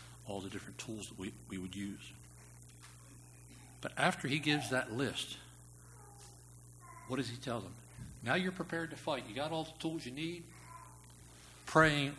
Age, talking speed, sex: 60-79, 160 wpm, male